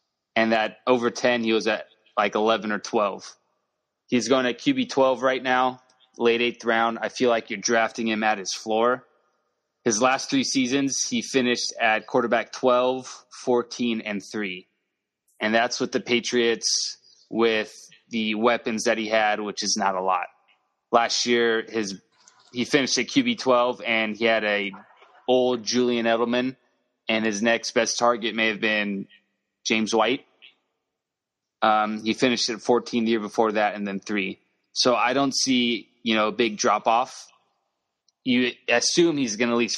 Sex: male